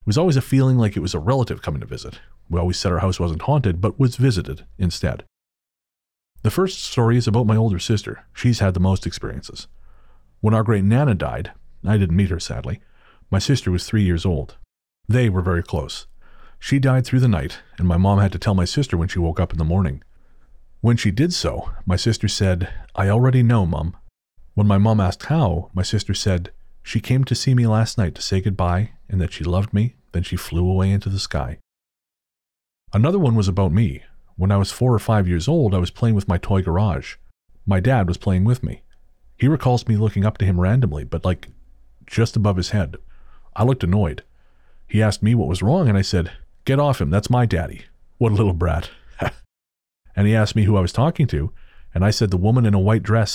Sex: male